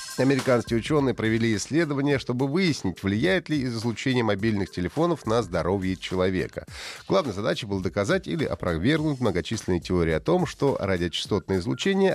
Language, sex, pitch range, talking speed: Russian, male, 105-165 Hz, 135 wpm